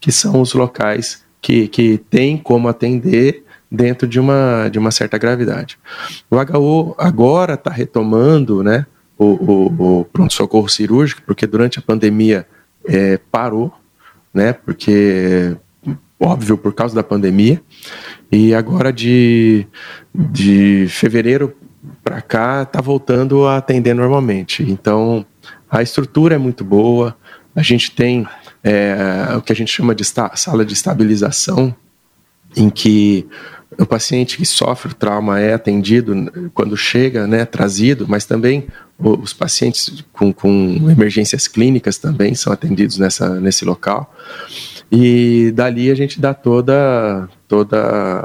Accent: Brazilian